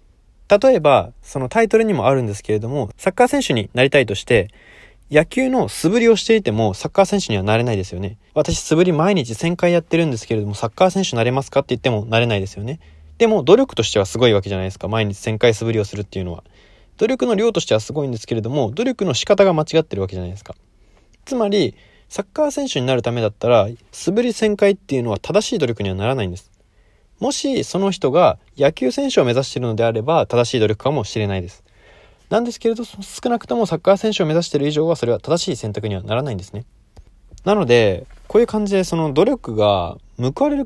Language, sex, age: Japanese, male, 20-39